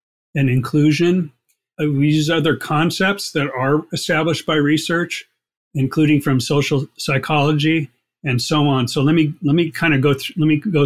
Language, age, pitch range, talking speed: English, 30-49, 130-155 Hz, 170 wpm